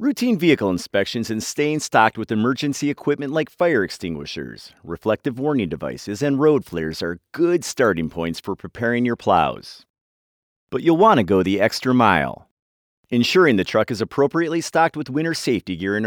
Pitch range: 100-145 Hz